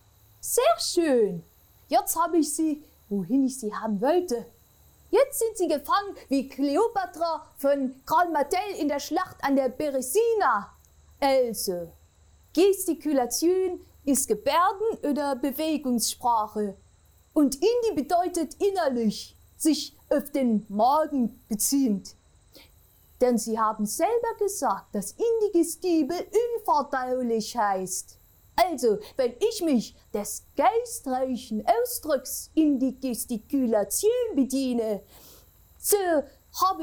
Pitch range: 255-385 Hz